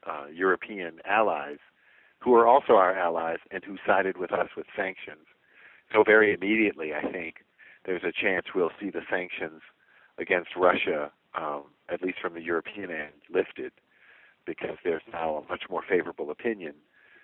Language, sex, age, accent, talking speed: English, male, 50-69, American, 155 wpm